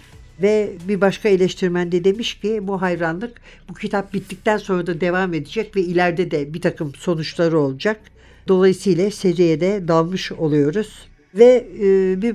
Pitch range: 175-215 Hz